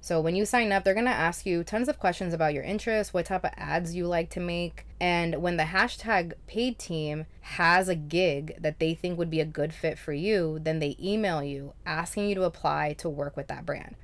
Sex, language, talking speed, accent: female, English, 235 wpm, American